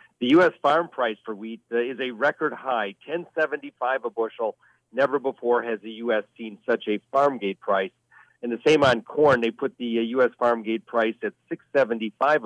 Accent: American